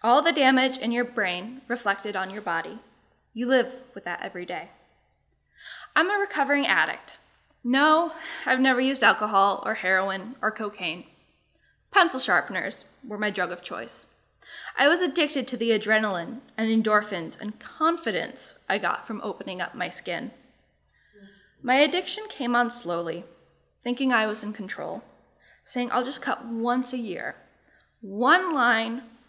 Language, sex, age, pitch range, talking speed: English, female, 10-29, 195-260 Hz, 150 wpm